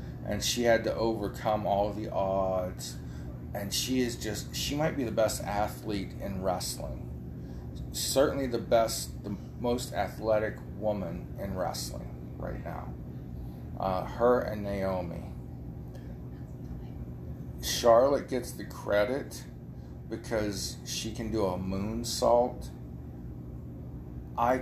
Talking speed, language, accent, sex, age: 110 wpm, English, American, male, 40-59